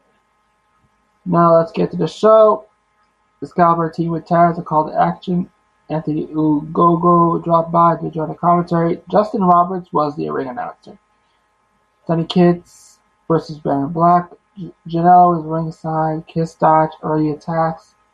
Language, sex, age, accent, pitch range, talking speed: English, male, 20-39, American, 155-185 Hz, 135 wpm